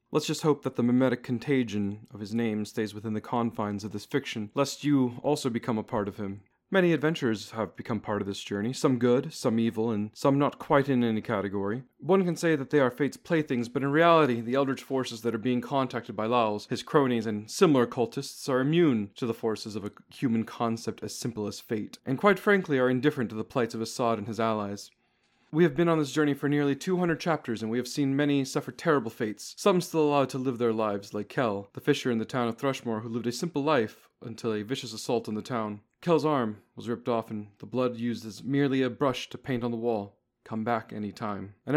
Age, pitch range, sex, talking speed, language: 40-59, 115-145 Hz, male, 235 wpm, English